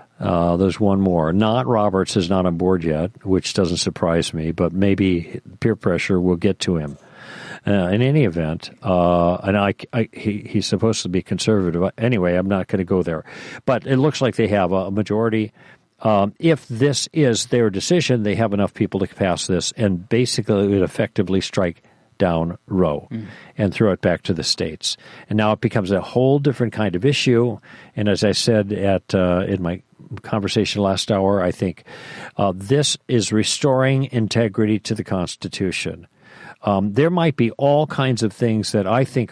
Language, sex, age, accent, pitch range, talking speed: English, male, 50-69, American, 95-120 Hz, 180 wpm